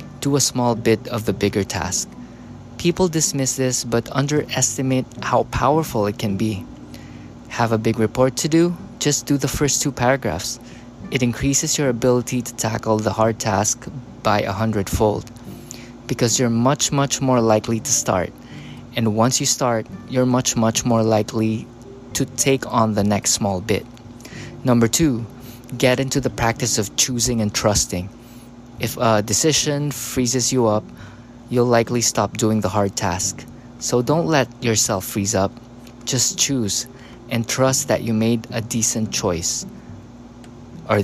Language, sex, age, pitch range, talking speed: English, male, 20-39, 110-130 Hz, 155 wpm